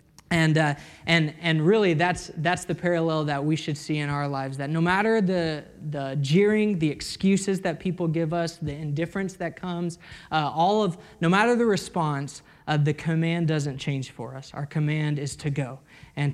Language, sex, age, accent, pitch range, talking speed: English, male, 20-39, American, 150-175 Hz, 190 wpm